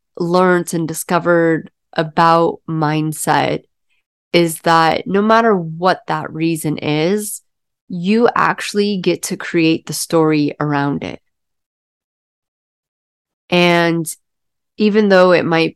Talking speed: 105 wpm